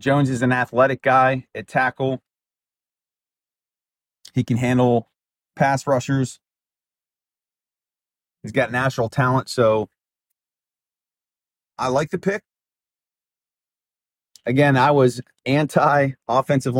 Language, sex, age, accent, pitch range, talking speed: English, male, 30-49, American, 125-160 Hz, 90 wpm